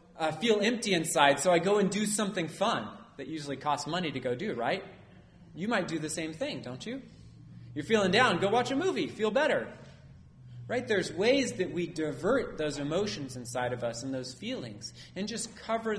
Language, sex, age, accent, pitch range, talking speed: English, male, 30-49, American, 130-190 Hz, 205 wpm